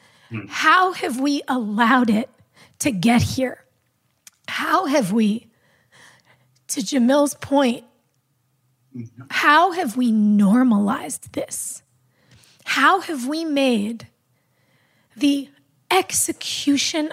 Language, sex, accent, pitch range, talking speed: English, female, American, 220-280 Hz, 90 wpm